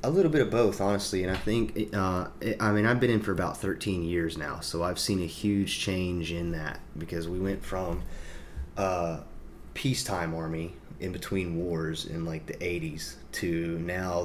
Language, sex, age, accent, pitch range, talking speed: English, male, 30-49, American, 80-95 Hz, 185 wpm